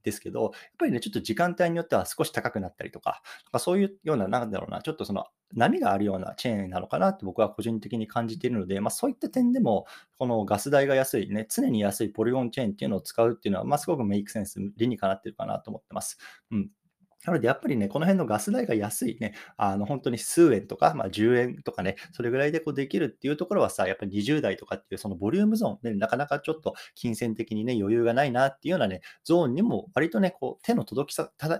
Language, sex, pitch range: Japanese, male, 100-170 Hz